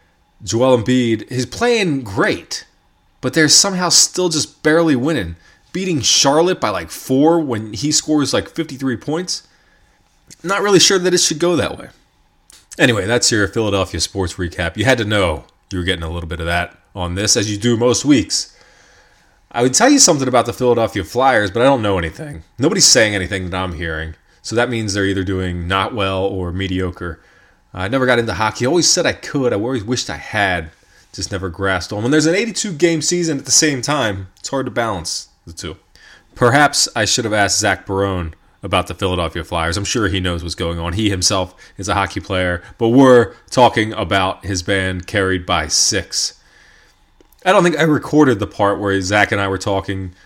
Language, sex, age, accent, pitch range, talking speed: English, male, 20-39, American, 95-130 Hz, 200 wpm